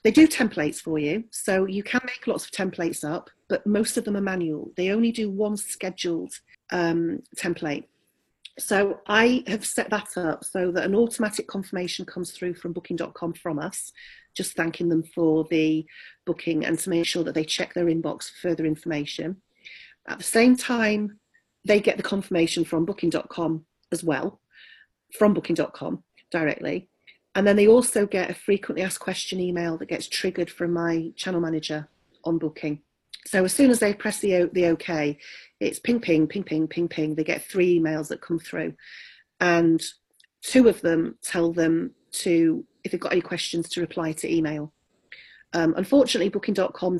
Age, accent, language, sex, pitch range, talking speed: 40-59, British, English, female, 165-205 Hz, 175 wpm